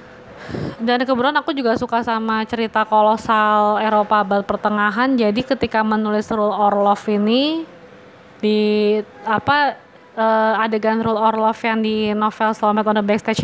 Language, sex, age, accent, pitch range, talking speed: Indonesian, female, 20-39, native, 215-255 Hz, 135 wpm